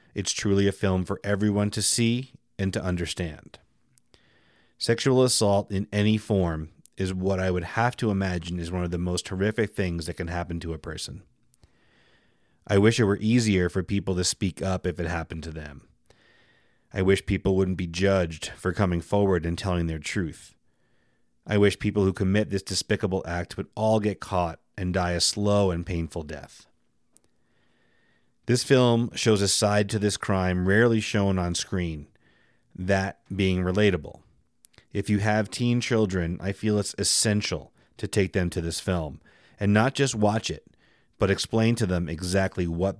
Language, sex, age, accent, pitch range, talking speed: English, male, 30-49, American, 85-105 Hz, 175 wpm